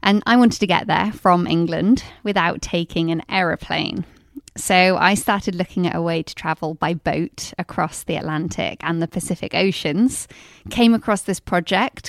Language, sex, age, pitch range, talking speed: English, female, 20-39, 170-205 Hz, 170 wpm